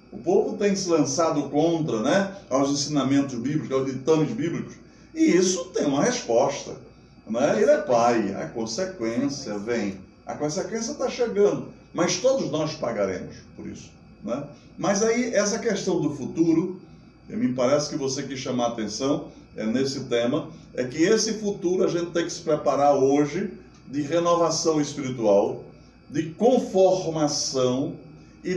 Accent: Brazilian